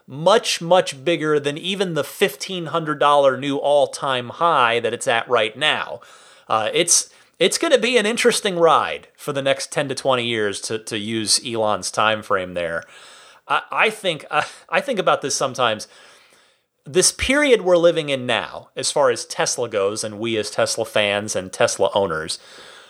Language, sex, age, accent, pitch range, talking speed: English, male, 30-49, American, 130-210 Hz, 175 wpm